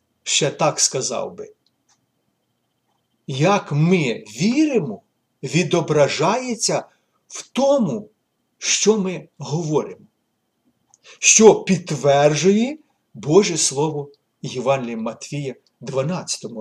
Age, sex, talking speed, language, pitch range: 50-69, male, 70 wpm, Ukrainian, 145-210 Hz